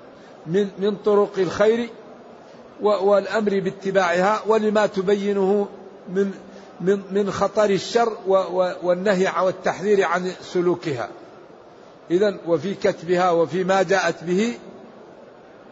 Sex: male